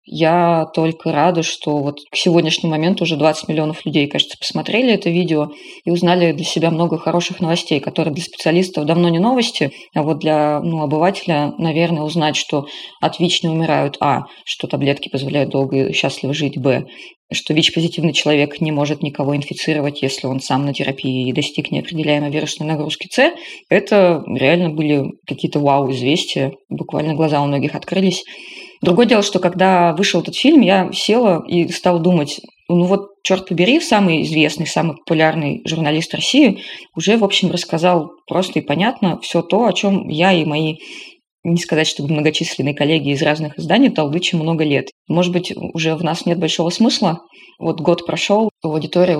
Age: 20-39